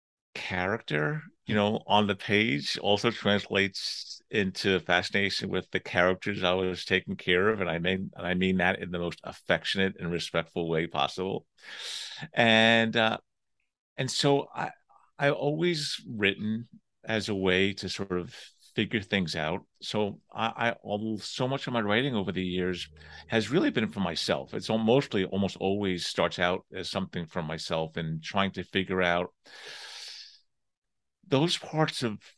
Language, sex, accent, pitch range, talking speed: English, male, American, 90-115 Hz, 160 wpm